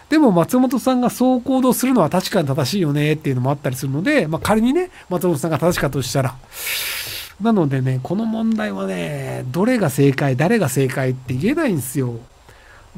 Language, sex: Japanese, male